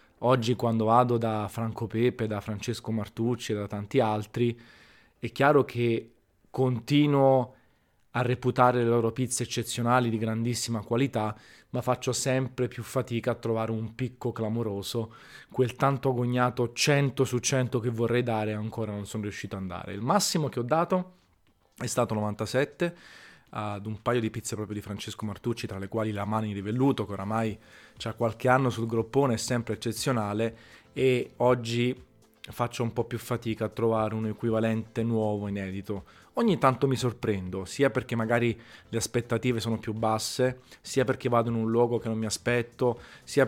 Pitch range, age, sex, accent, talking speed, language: 110-125 Hz, 20-39, male, native, 165 wpm, Italian